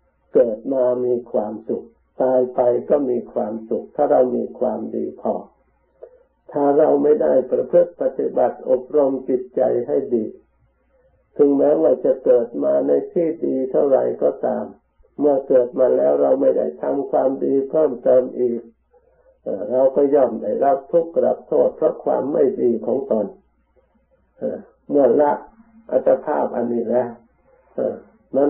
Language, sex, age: Thai, male, 50-69